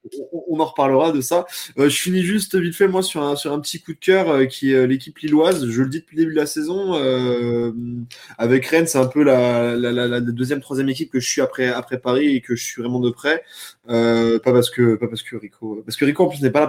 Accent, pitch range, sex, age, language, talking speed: French, 120-155 Hz, male, 20-39, French, 275 wpm